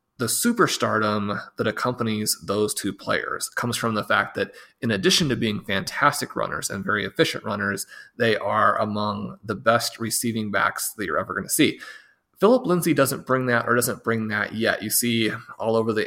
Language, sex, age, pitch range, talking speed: English, male, 30-49, 110-135 Hz, 190 wpm